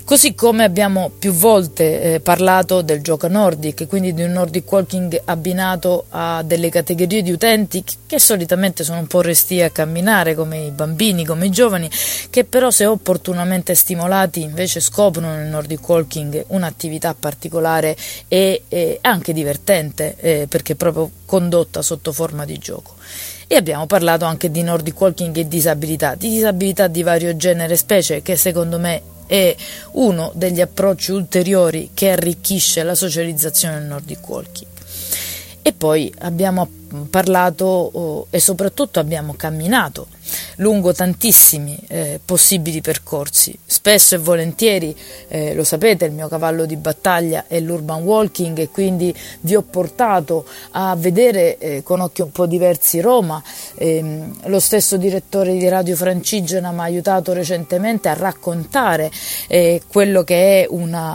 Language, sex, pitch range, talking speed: Italian, female, 160-190 Hz, 145 wpm